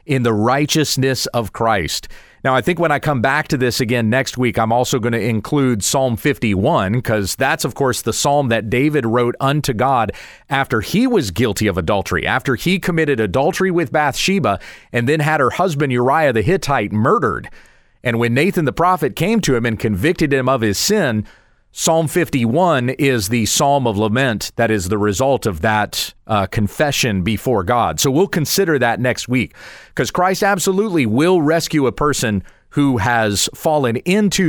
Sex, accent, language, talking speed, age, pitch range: male, American, English, 180 wpm, 40-59, 115-160 Hz